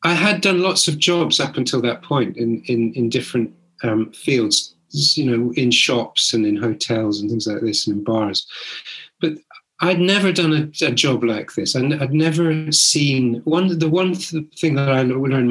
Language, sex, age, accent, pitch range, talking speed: English, male, 30-49, British, 115-150 Hz, 185 wpm